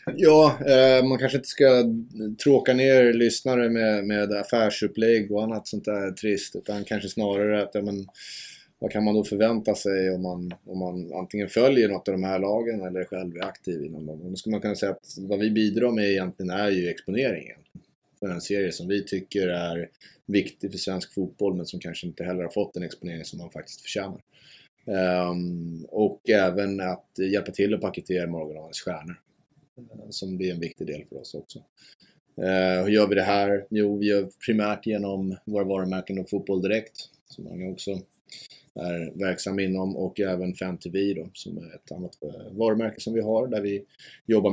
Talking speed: 190 wpm